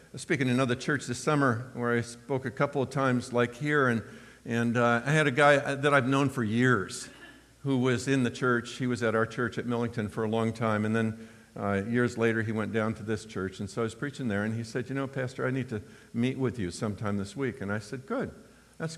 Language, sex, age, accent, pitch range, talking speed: English, male, 50-69, American, 115-160 Hz, 260 wpm